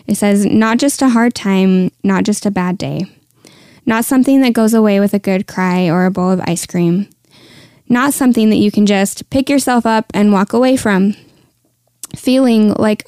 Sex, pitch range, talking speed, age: female, 185-220 Hz, 195 wpm, 10-29